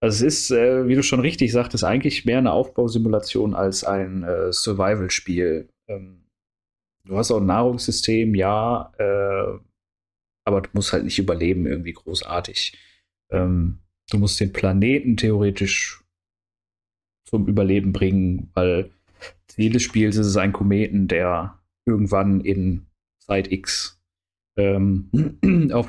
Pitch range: 90-105 Hz